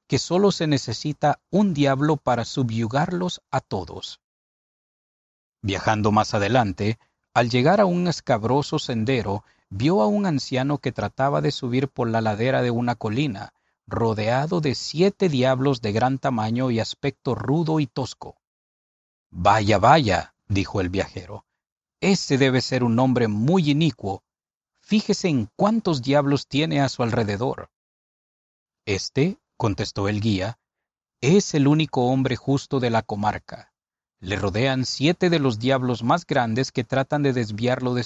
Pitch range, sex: 115-150 Hz, male